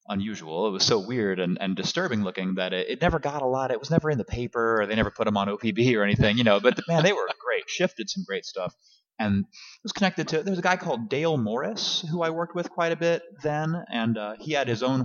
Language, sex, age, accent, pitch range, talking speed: English, male, 30-49, American, 110-185 Hz, 270 wpm